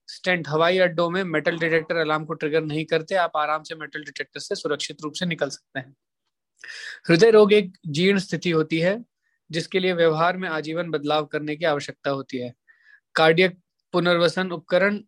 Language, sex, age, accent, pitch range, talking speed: English, male, 20-39, Indian, 155-180 Hz, 170 wpm